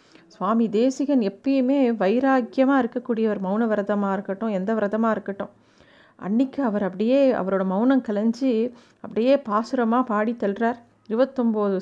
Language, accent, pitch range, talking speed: Tamil, native, 200-235 Hz, 105 wpm